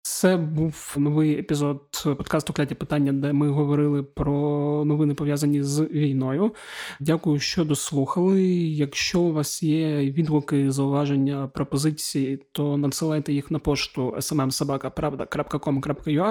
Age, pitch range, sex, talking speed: 20-39, 140-160 Hz, male, 115 wpm